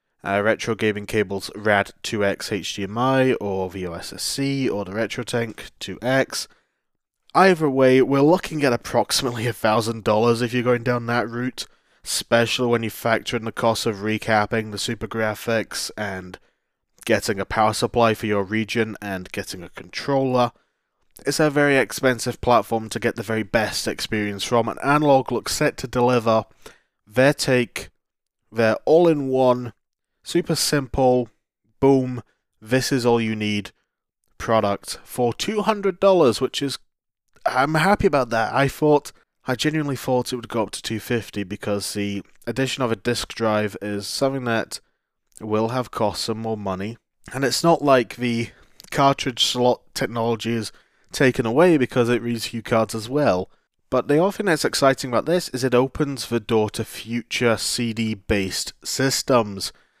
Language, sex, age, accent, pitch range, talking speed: English, male, 20-39, British, 110-130 Hz, 150 wpm